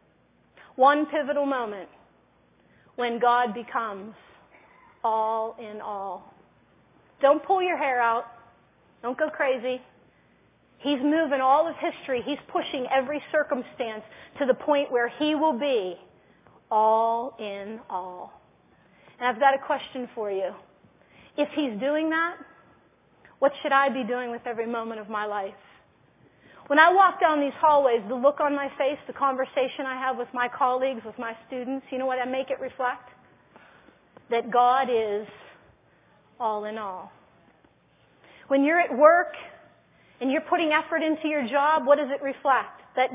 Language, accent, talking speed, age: English, American, 150 wpm, 30-49